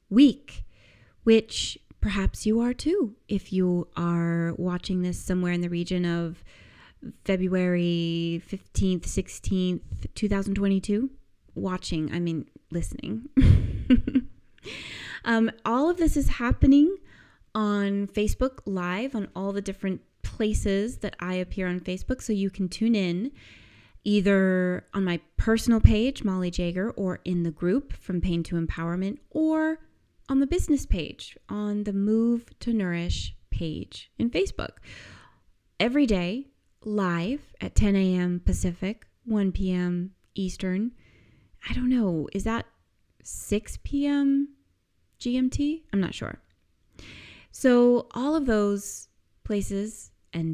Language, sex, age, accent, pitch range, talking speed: English, female, 20-39, American, 175-230 Hz, 120 wpm